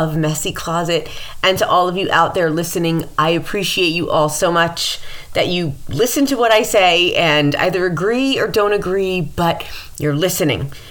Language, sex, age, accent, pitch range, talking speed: English, female, 30-49, American, 140-180 Hz, 175 wpm